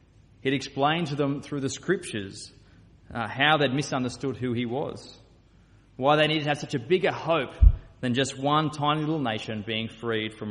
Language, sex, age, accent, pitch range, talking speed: English, male, 20-39, Australian, 120-170 Hz, 185 wpm